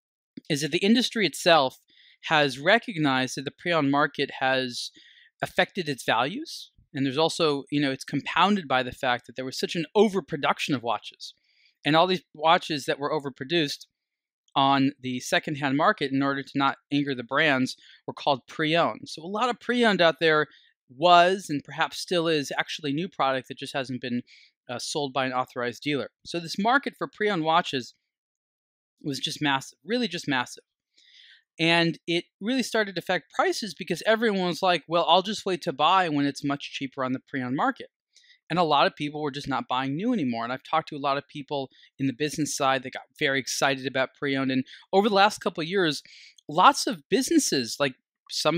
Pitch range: 135-185 Hz